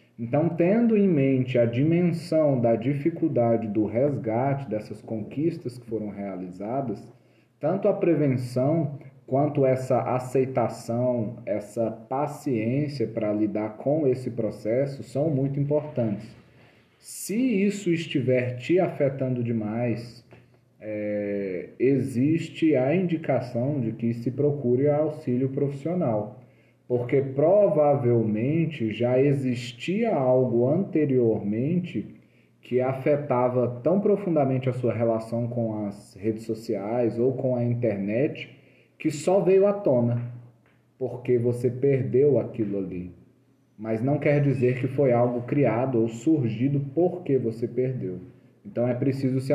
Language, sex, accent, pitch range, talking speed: Portuguese, male, Brazilian, 115-145 Hz, 115 wpm